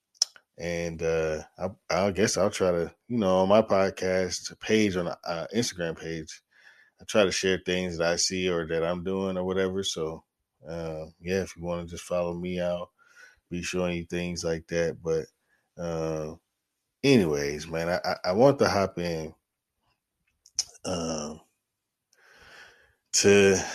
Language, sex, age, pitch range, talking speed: English, male, 20-39, 80-95 Hz, 155 wpm